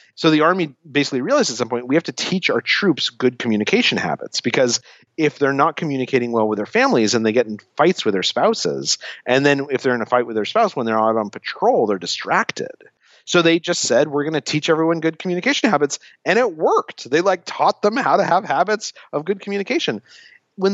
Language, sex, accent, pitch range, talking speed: English, male, American, 120-185 Hz, 225 wpm